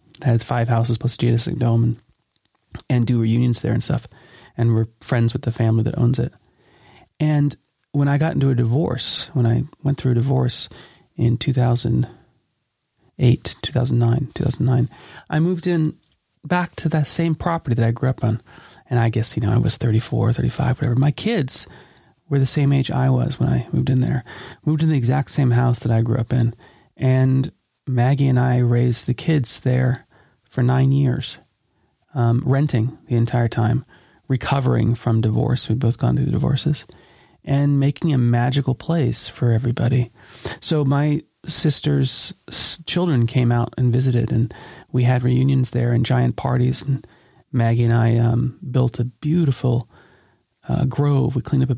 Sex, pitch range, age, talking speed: male, 120-140 Hz, 30-49, 175 wpm